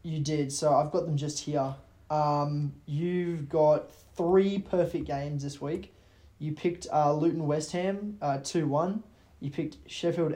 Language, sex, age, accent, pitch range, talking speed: English, male, 20-39, Australian, 135-155 Hz, 160 wpm